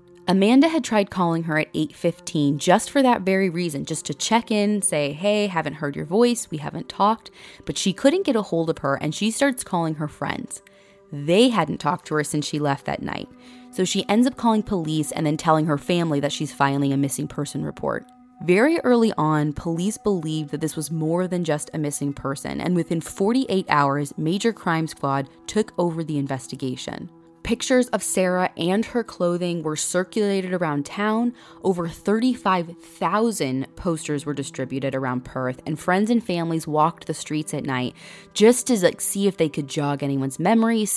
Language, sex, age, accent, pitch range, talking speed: English, female, 20-39, American, 150-205 Hz, 185 wpm